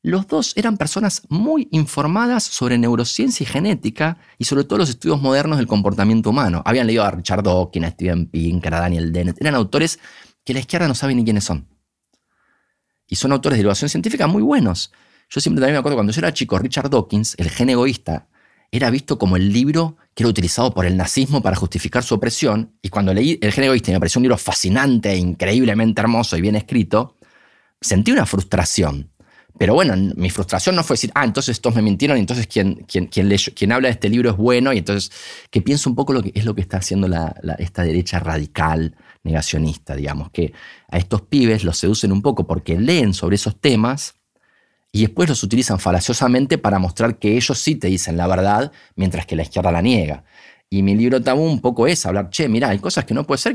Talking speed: 210 wpm